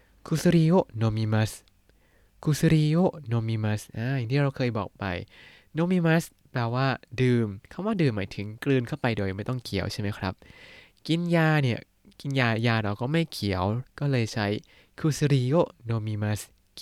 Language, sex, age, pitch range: Thai, male, 20-39, 105-140 Hz